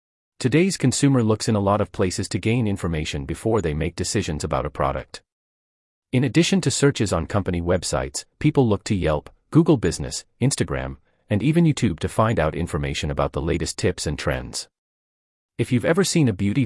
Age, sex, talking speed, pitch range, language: 40-59, male, 185 wpm, 75-120 Hz, English